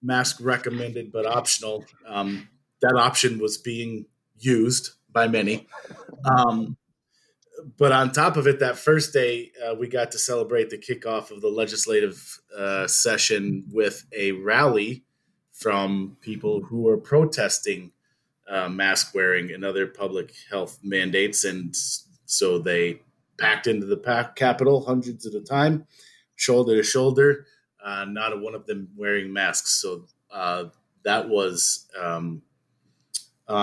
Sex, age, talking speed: male, 30-49, 135 wpm